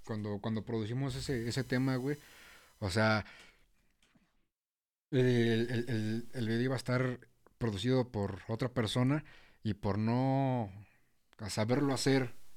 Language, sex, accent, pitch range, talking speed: Spanish, male, Mexican, 105-125 Hz, 125 wpm